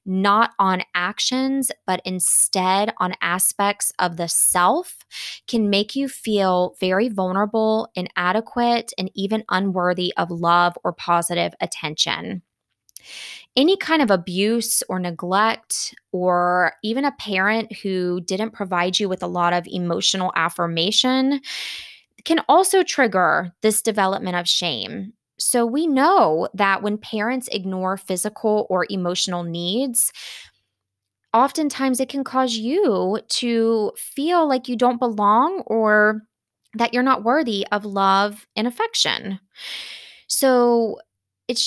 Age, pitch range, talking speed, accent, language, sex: 20-39, 185-235 Hz, 120 wpm, American, English, female